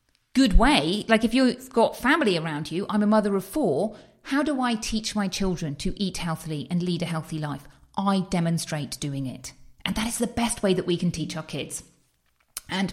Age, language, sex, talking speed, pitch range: 40-59, English, female, 210 wpm, 170-215 Hz